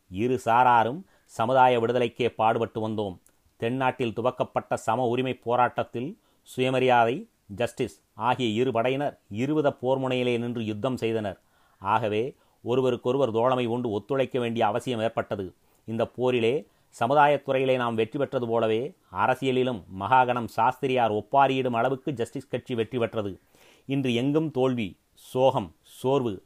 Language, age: Tamil, 30-49